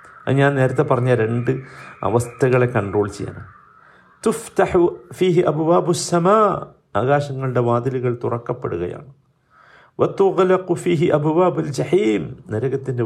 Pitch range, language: 120-185 Hz, Malayalam